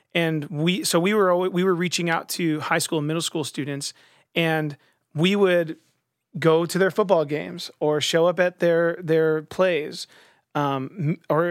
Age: 30-49